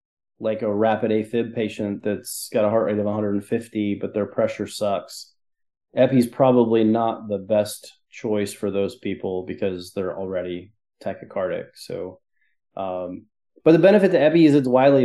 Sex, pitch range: male, 105-125 Hz